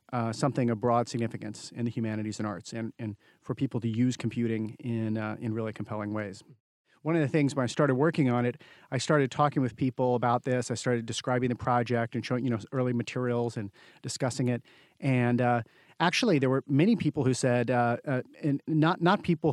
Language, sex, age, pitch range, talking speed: English, male, 40-59, 120-140 Hz, 210 wpm